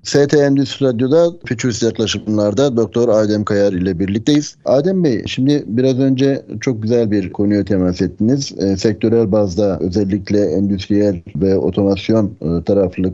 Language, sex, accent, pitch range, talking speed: Turkish, male, native, 95-125 Hz, 135 wpm